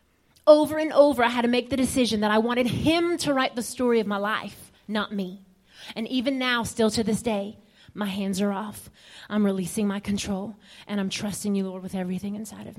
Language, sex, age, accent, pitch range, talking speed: English, female, 30-49, American, 210-260 Hz, 215 wpm